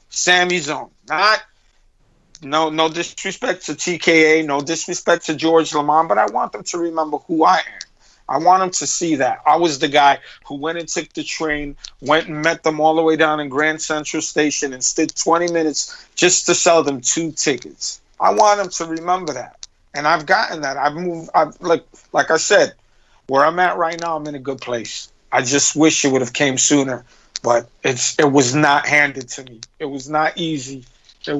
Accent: American